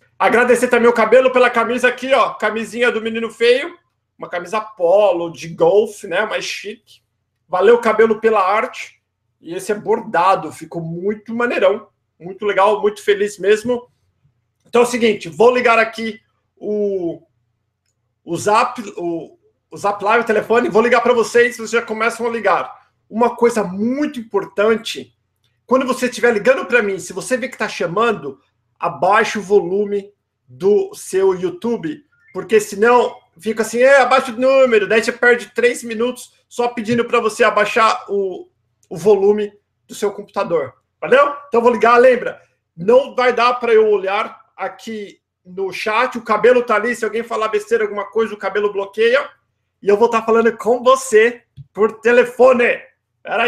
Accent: Brazilian